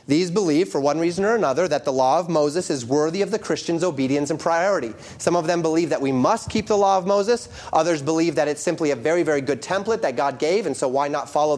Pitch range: 135-180 Hz